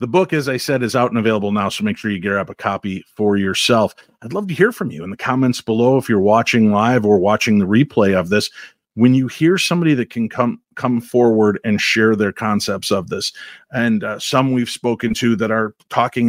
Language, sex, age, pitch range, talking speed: English, male, 40-59, 110-125 Hz, 230 wpm